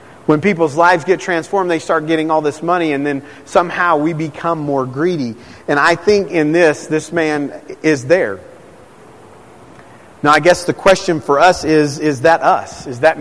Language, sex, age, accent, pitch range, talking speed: English, male, 40-59, American, 150-180 Hz, 180 wpm